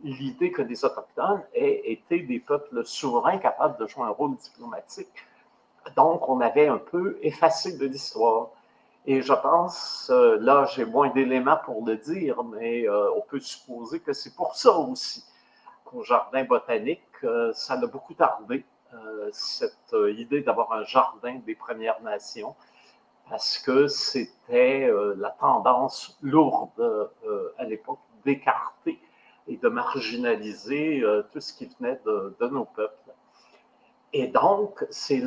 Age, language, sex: 50-69, French, male